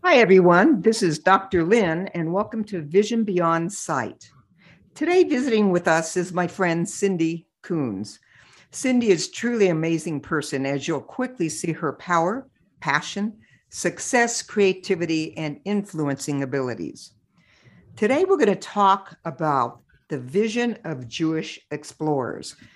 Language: English